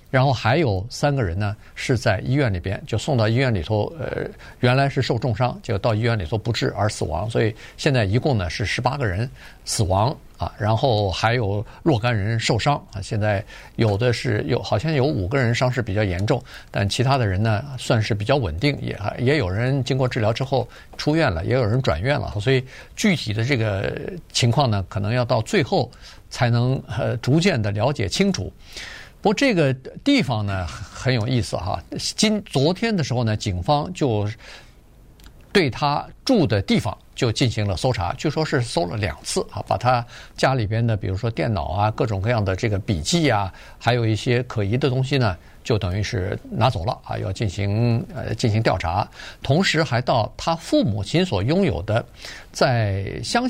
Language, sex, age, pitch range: Chinese, male, 50-69, 105-135 Hz